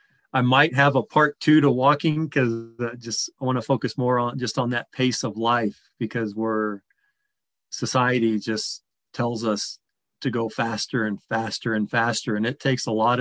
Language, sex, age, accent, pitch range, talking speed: English, male, 40-59, American, 110-130 Hz, 180 wpm